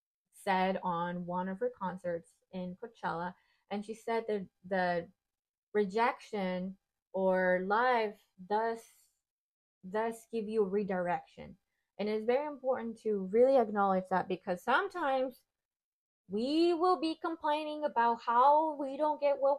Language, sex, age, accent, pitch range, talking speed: English, female, 20-39, American, 185-235 Hz, 125 wpm